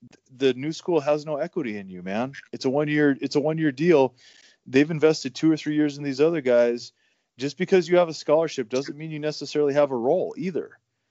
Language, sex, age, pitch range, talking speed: English, male, 20-39, 110-145 Hz, 215 wpm